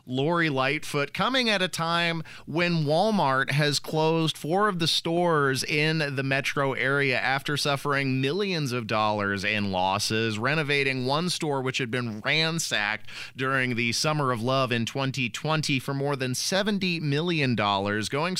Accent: American